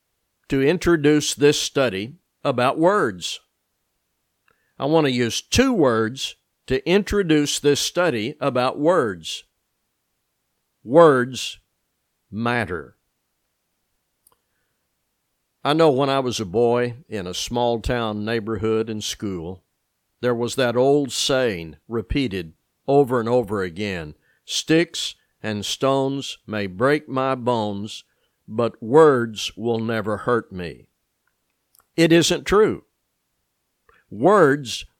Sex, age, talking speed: male, 50-69, 105 wpm